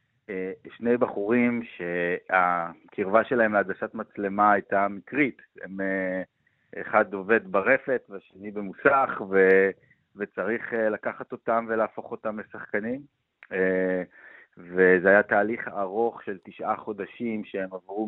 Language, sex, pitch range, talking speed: Hebrew, male, 95-115 Hz, 100 wpm